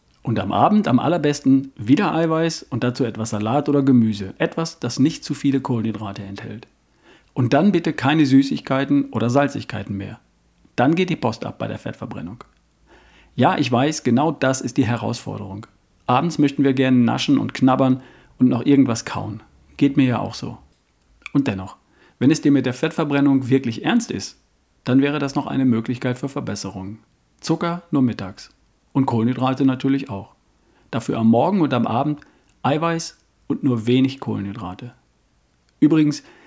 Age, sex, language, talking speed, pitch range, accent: 50-69, male, German, 160 wpm, 105-140 Hz, German